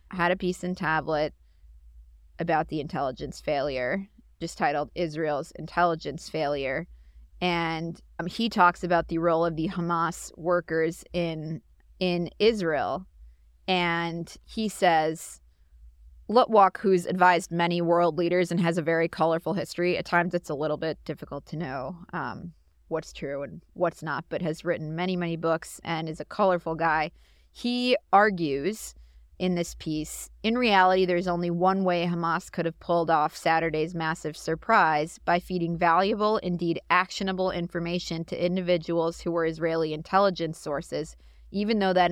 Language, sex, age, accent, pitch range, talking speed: English, female, 20-39, American, 160-180 Hz, 150 wpm